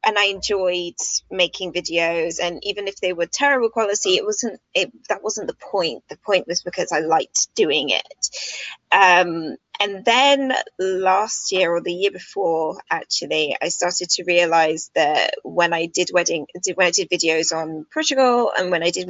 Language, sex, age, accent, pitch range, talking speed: English, female, 20-39, British, 175-245 Hz, 175 wpm